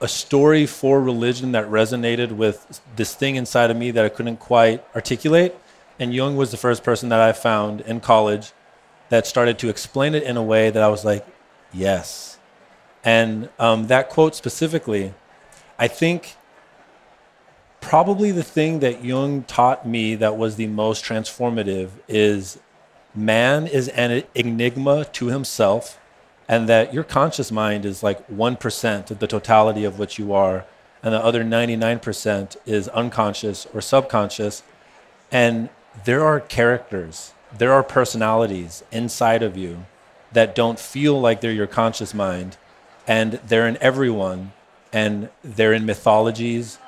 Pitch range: 110-125 Hz